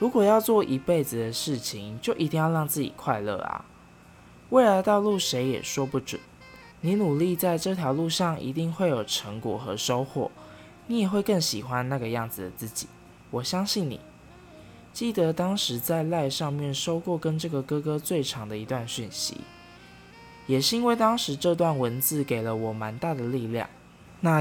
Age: 20-39